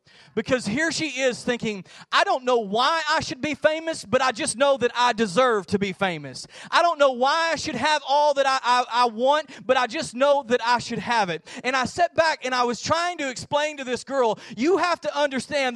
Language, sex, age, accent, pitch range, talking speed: English, male, 30-49, American, 240-310 Hz, 230 wpm